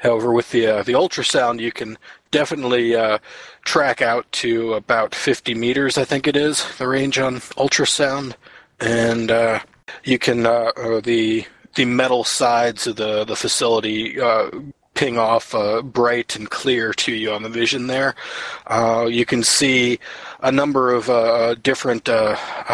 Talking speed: 160 wpm